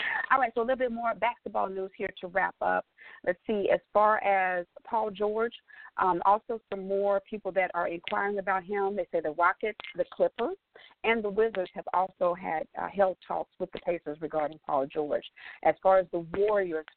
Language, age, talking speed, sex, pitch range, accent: English, 40-59, 200 wpm, female, 175-220 Hz, American